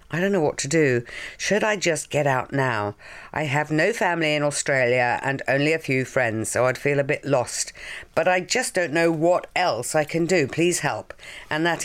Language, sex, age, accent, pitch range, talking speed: English, female, 50-69, British, 150-215 Hz, 220 wpm